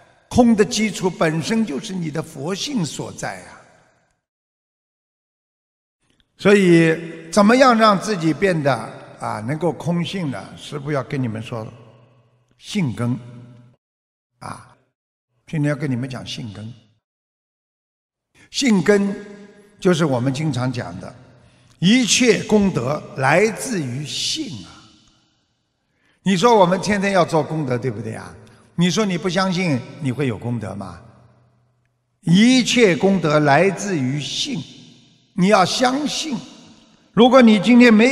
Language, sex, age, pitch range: Chinese, male, 50-69, 125-190 Hz